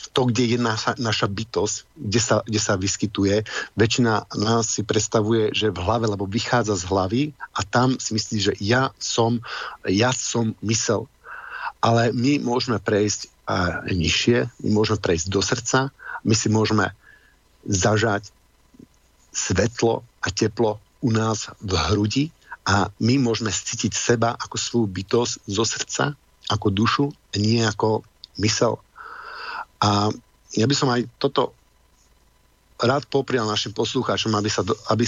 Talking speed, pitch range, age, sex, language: 140 wpm, 105-120 Hz, 50-69, male, Slovak